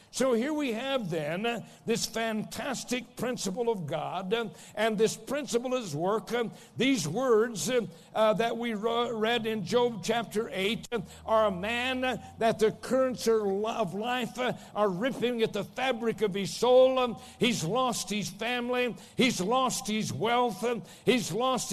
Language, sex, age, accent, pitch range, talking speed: English, male, 60-79, American, 160-235 Hz, 140 wpm